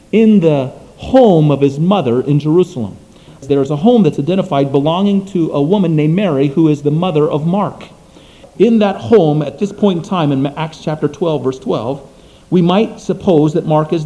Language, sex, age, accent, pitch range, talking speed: English, male, 40-59, American, 150-200 Hz, 195 wpm